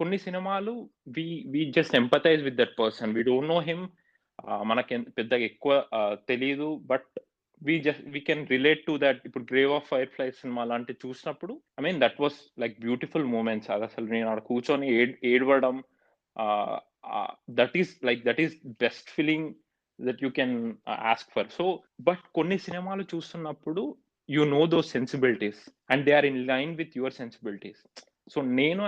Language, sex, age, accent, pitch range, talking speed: Telugu, male, 30-49, native, 130-165 Hz, 160 wpm